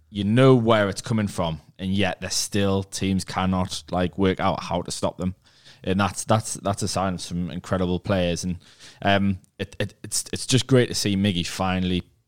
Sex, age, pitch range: male, 20-39, 90-105 Hz